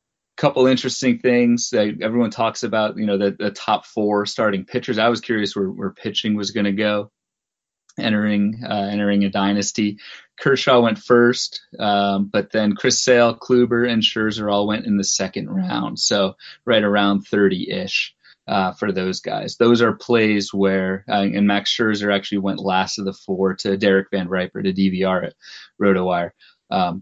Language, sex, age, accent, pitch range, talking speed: English, male, 30-49, American, 100-115 Hz, 175 wpm